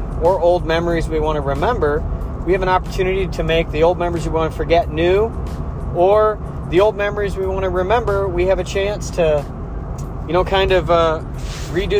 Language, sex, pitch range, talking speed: English, male, 135-185 Hz, 200 wpm